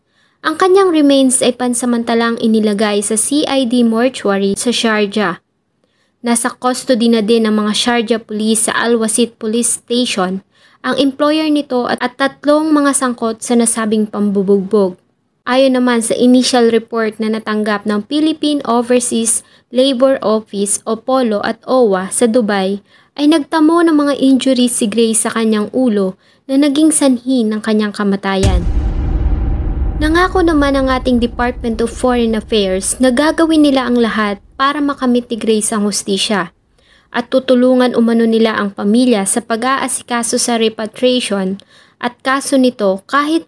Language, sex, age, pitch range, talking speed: English, female, 20-39, 215-260 Hz, 135 wpm